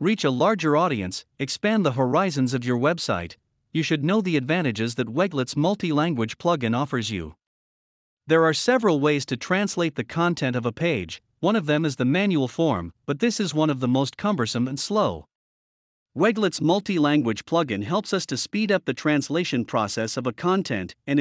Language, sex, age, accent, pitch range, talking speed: English, male, 50-69, American, 130-185 Hz, 180 wpm